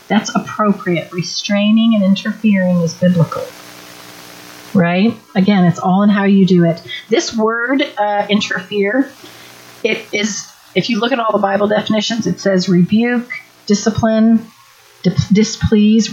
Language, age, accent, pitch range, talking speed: English, 40-59, American, 160-215 Hz, 130 wpm